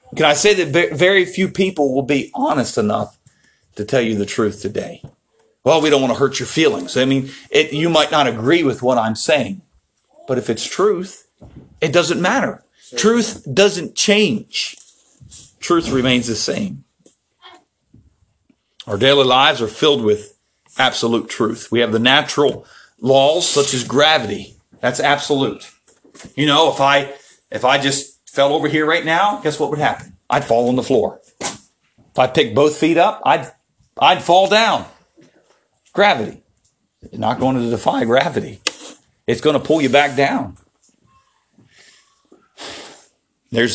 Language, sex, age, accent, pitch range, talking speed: English, male, 40-59, American, 120-160 Hz, 155 wpm